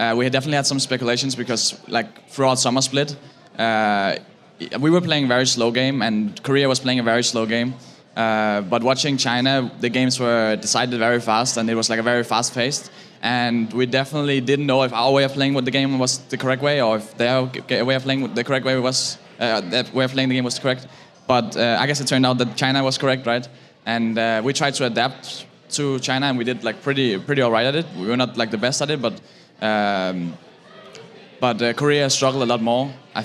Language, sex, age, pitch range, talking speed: English, male, 10-29, 115-135 Hz, 235 wpm